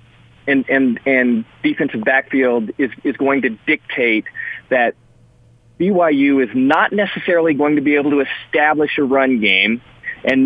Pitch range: 120-150 Hz